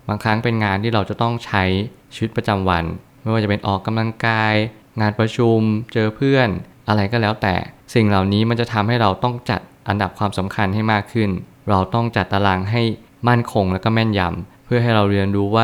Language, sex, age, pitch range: Thai, male, 20-39, 95-115 Hz